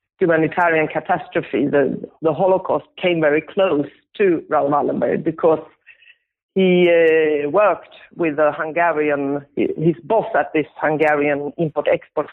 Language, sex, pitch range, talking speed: English, female, 150-195 Hz, 115 wpm